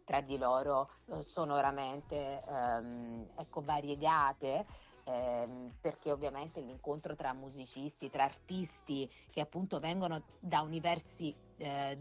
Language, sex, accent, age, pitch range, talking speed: Italian, female, native, 30-49, 125-160 Hz, 105 wpm